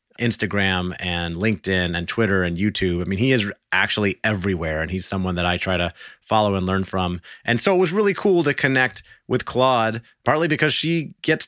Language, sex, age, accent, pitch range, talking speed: English, male, 30-49, American, 95-115 Hz, 200 wpm